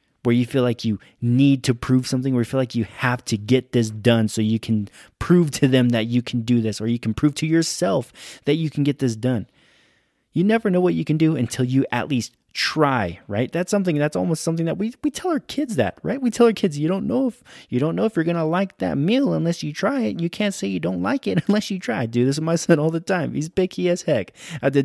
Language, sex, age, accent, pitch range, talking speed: English, male, 20-39, American, 95-150 Hz, 280 wpm